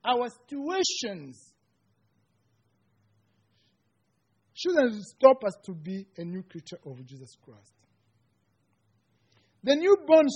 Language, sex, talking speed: English, male, 85 wpm